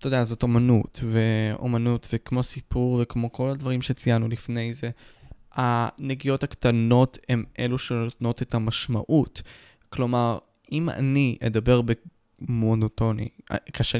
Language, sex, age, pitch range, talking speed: Hebrew, male, 20-39, 110-135 Hz, 110 wpm